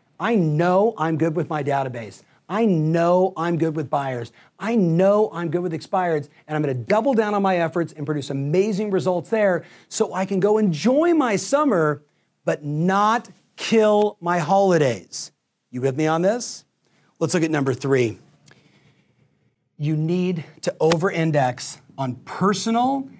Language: English